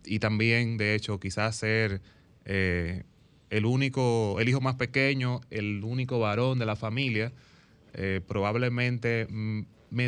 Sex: male